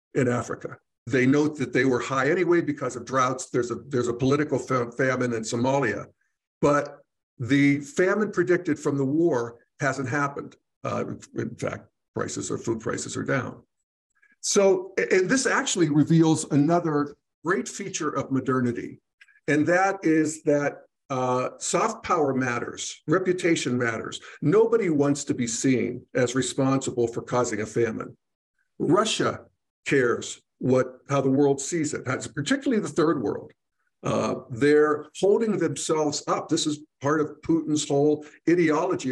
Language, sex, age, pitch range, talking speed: English, male, 50-69, 130-165 Hz, 145 wpm